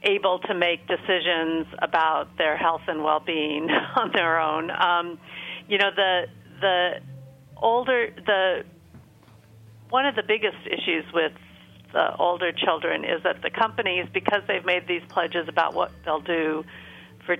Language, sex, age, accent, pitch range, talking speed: English, female, 50-69, American, 155-185 Hz, 145 wpm